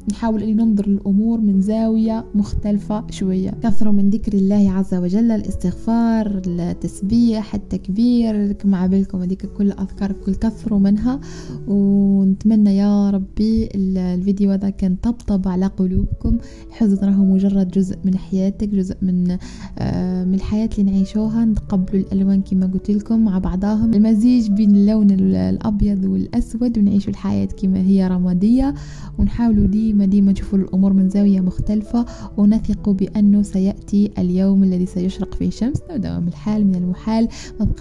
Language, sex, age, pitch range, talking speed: Arabic, female, 20-39, 190-215 Hz, 135 wpm